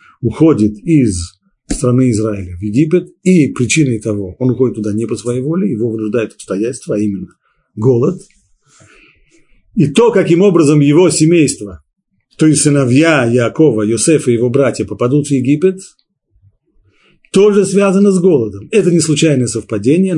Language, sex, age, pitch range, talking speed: Russian, male, 40-59, 110-155 Hz, 140 wpm